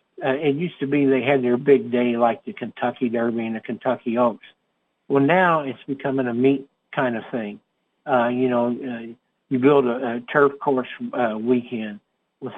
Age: 60-79